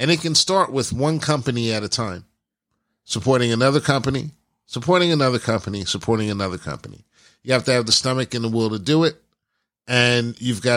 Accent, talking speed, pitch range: American, 190 wpm, 115-155 Hz